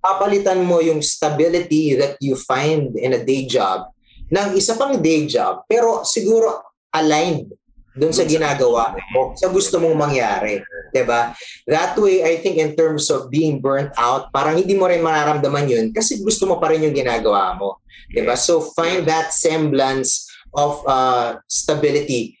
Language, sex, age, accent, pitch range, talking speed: English, male, 20-39, Filipino, 130-185 Hz, 160 wpm